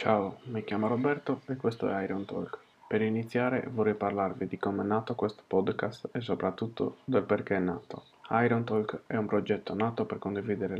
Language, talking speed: Italian, 185 wpm